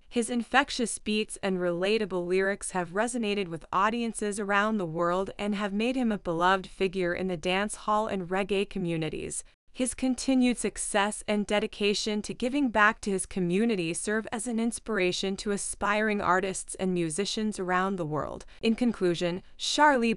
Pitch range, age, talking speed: 190-230 Hz, 20-39, 160 wpm